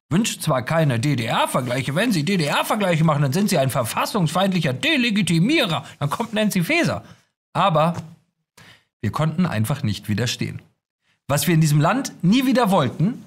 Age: 40-59